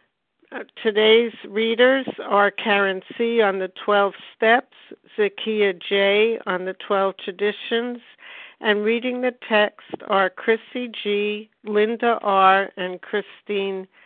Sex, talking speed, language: female, 115 wpm, English